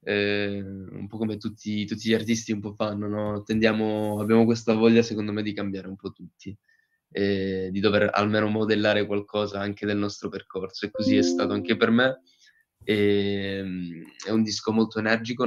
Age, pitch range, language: 20-39, 100-110 Hz, Italian